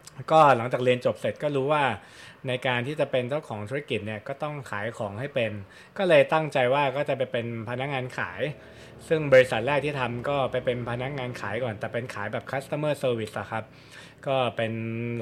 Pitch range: 115-140 Hz